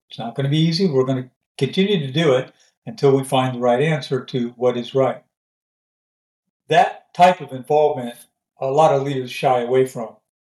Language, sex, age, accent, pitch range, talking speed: English, male, 60-79, American, 125-145 Hz, 195 wpm